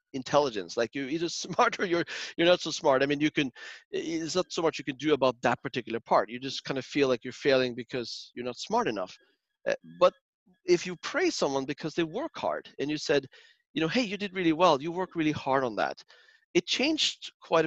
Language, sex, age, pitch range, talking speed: English, male, 40-59, 135-170 Hz, 230 wpm